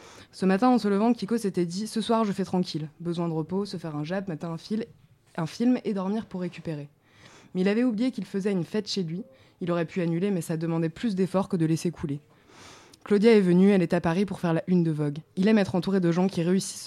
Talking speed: 265 wpm